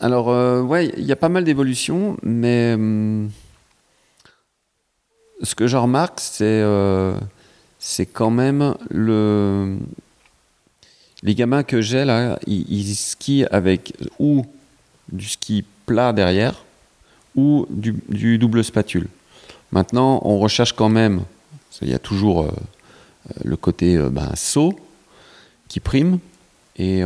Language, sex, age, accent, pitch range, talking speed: French, male, 40-59, French, 95-120 Hz, 130 wpm